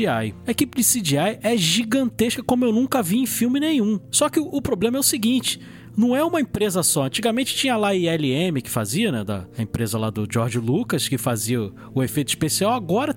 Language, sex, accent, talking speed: Portuguese, male, Brazilian, 205 wpm